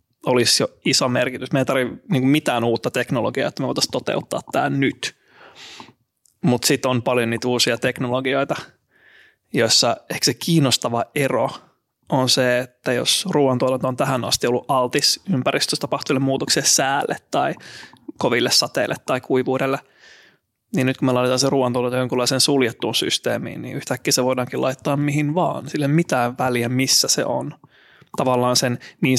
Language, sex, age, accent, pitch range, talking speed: Finnish, male, 20-39, native, 125-145 Hz, 150 wpm